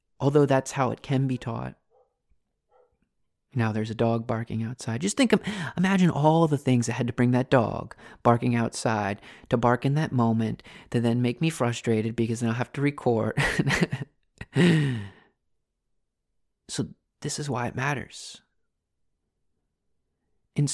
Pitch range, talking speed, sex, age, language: 115-145 Hz, 150 wpm, male, 30-49, English